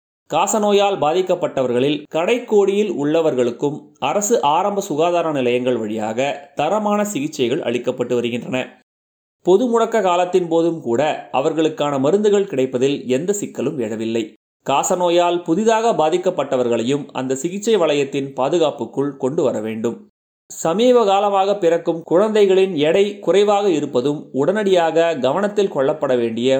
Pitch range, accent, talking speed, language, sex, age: 130-190 Hz, native, 100 wpm, Tamil, male, 30-49